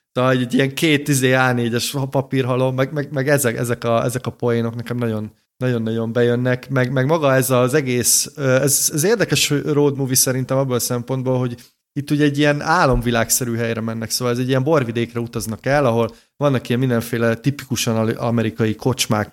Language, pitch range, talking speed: Hungarian, 120-140 Hz, 170 wpm